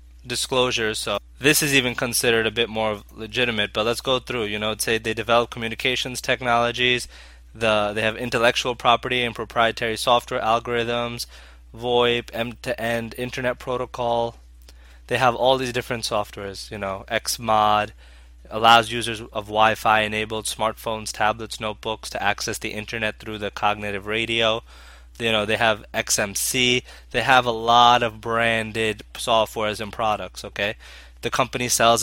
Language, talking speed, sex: English, 145 wpm, male